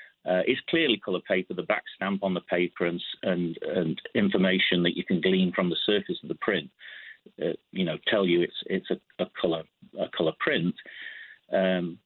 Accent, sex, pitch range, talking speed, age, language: British, male, 95-135 Hz, 195 wpm, 40-59, English